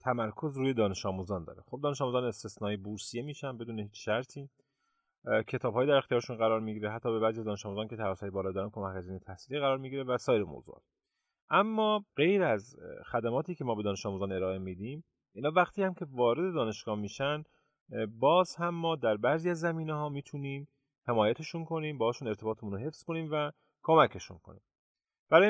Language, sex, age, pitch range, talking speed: Persian, male, 30-49, 105-150 Hz, 170 wpm